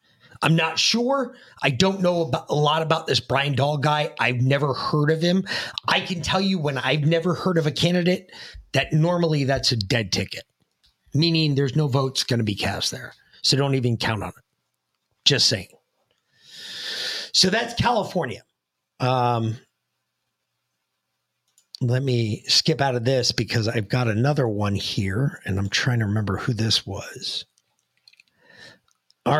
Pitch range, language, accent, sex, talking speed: 115-165 Hz, English, American, male, 160 wpm